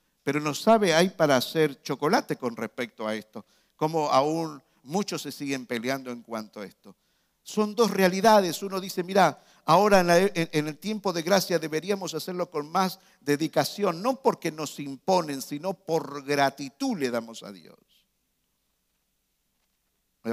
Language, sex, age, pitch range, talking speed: Spanish, male, 50-69, 150-200 Hz, 150 wpm